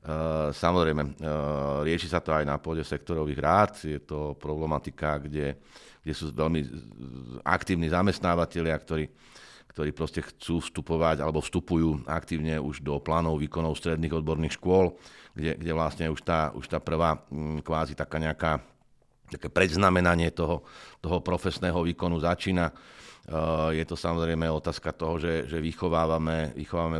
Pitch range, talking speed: 75-85 Hz, 135 wpm